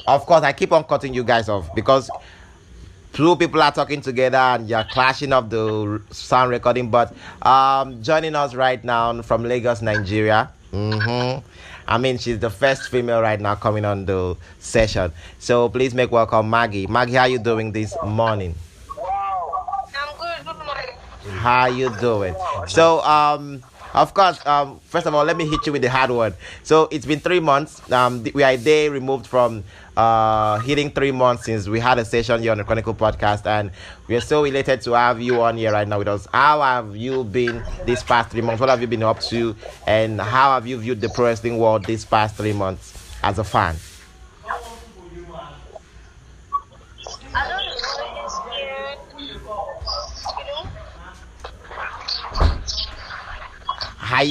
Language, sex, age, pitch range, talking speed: English, male, 30-49, 105-135 Hz, 160 wpm